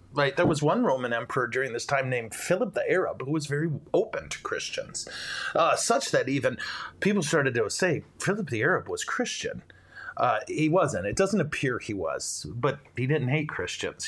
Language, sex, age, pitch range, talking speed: English, male, 30-49, 135-170 Hz, 190 wpm